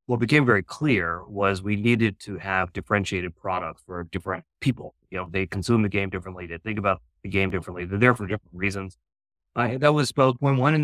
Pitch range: 90-105 Hz